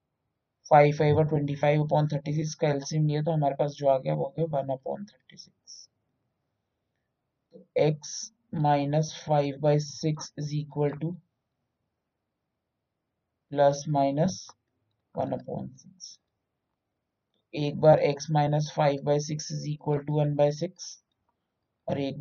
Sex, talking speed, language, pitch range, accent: male, 100 wpm, Hindi, 130-155 Hz, native